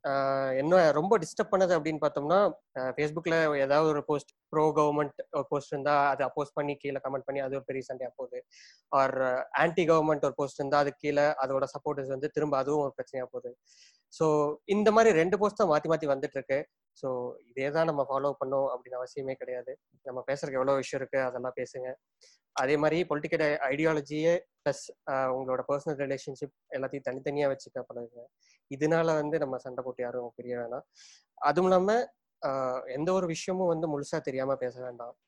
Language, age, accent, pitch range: Tamil, 20-39, native, 135-165 Hz